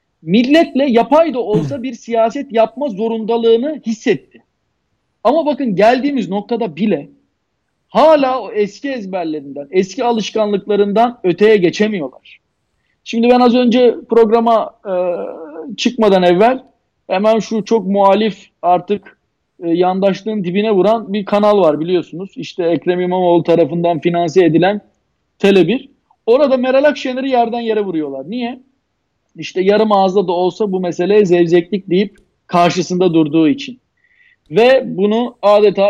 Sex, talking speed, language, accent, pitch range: male, 115 wpm, Turkish, native, 185-225 Hz